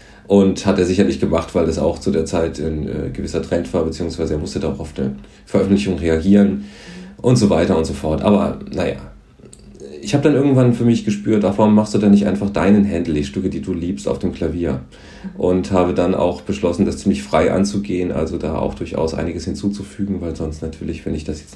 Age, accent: 40-59, German